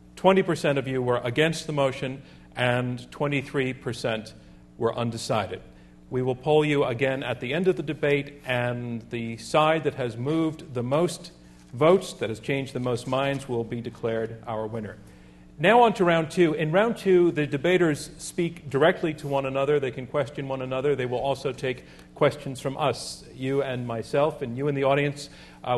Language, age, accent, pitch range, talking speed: English, 40-59, American, 120-150 Hz, 180 wpm